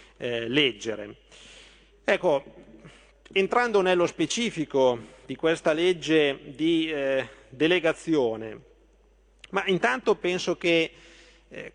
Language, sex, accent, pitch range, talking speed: Italian, male, native, 140-170 Hz, 85 wpm